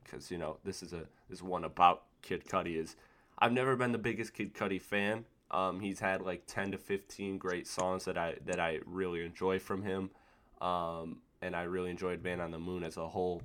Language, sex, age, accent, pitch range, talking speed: English, male, 20-39, American, 90-95 Hz, 220 wpm